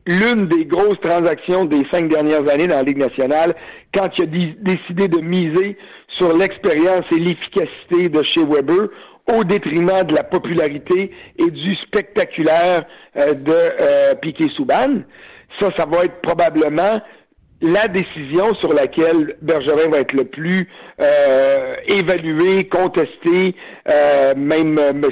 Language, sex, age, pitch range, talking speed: French, male, 60-79, 155-200 Hz, 135 wpm